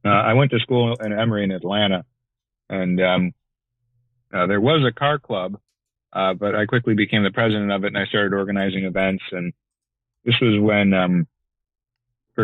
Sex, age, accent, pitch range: male, 30-49, American, 90-115 Hz